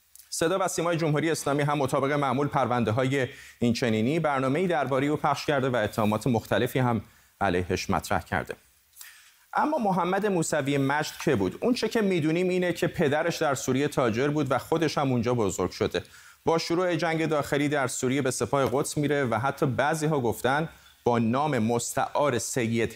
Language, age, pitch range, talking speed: Persian, 30-49, 115-160 Hz, 165 wpm